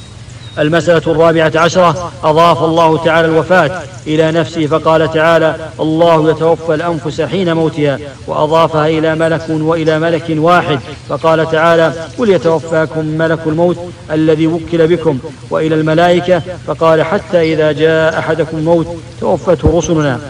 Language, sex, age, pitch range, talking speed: English, male, 50-69, 155-165 Hz, 120 wpm